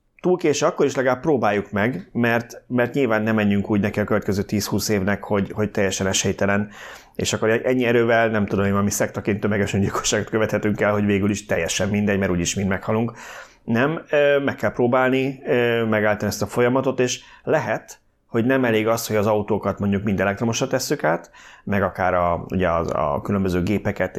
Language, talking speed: Hungarian, 185 wpm